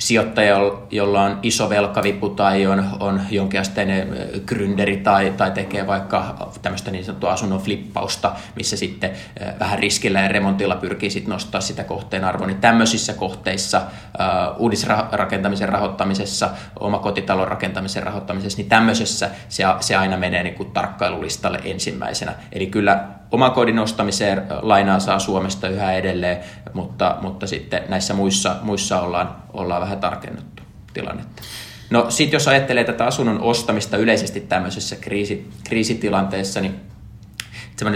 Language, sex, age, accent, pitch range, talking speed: Finnish, male, 20-39, native, 95-105 Hz, 125 wpm